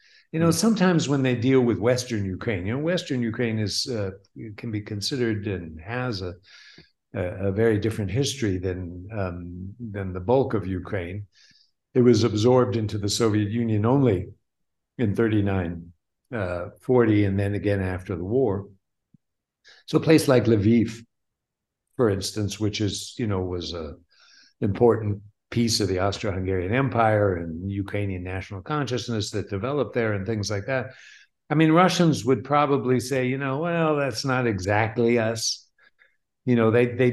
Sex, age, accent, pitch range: male, 60-79, American, 100-125 Hz